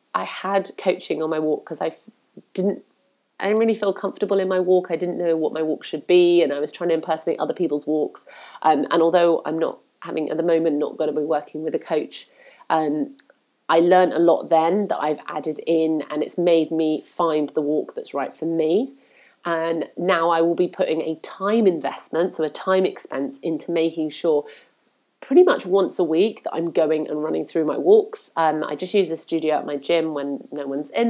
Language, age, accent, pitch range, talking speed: English, 30-49, British, 155-185 Hz, 220 wpm